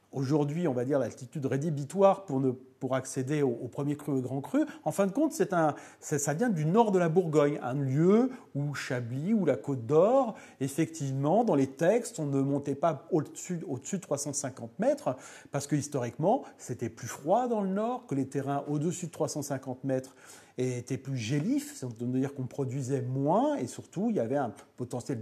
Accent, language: French, French